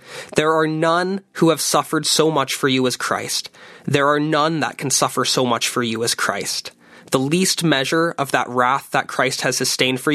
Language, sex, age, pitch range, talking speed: English, male, 20-39, 135-165 Hz, 205 wpm